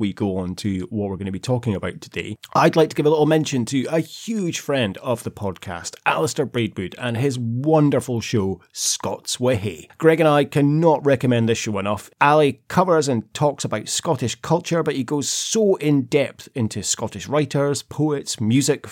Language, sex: English, male